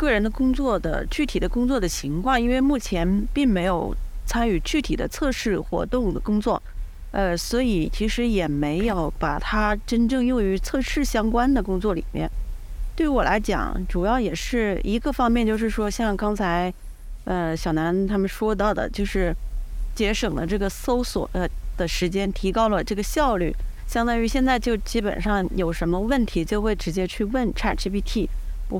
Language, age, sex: Chinese, 30-49, female